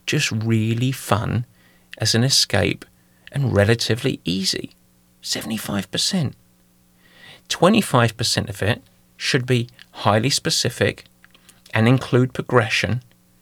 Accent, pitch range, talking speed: British, 95-135 Hz, 100 wpm